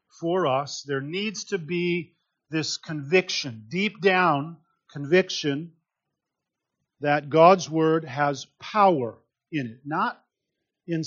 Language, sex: English, male